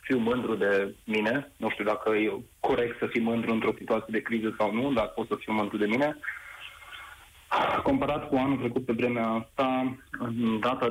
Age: 20-39